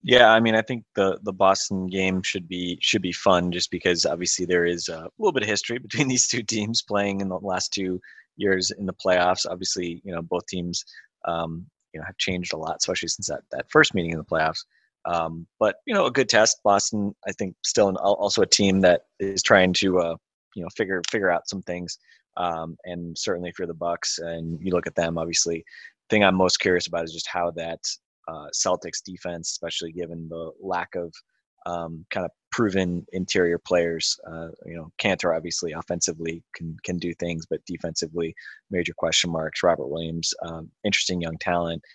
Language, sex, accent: English, male, American